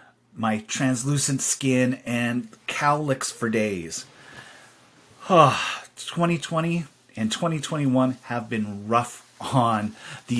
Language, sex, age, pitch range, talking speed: English, male, 30-49, 115-135 Hz, 90 wpm